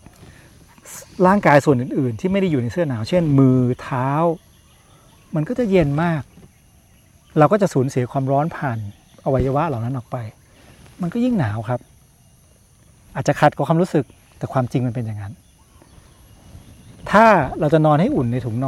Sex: male